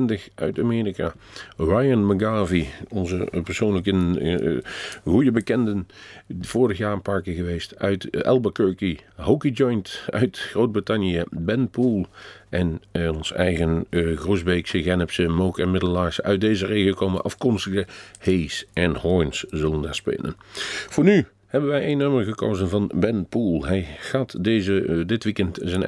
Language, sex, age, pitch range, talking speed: Dutch, male, 50-69, 85-105 Hz, 145 wpm